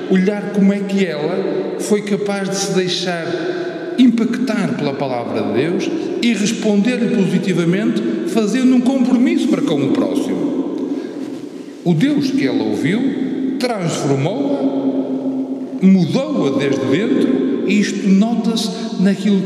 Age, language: 50-69, Portuguese